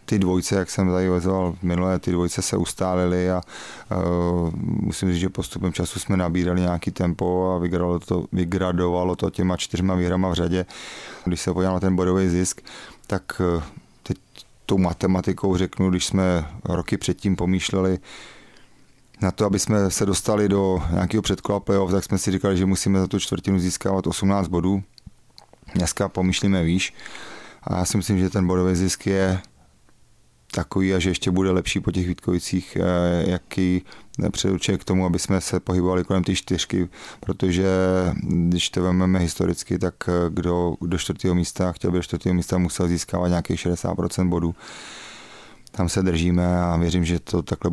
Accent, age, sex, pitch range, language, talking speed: native, 30-49, male, 85-95 Hz, Czech, 160 wpm